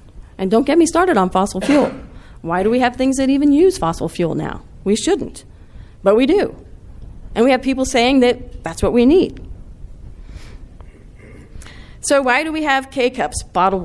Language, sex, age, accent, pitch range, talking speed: English, female, 40-59, American, 175-255 Hz, 180 wpm